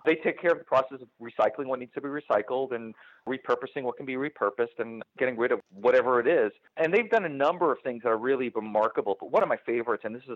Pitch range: 110-155 Hz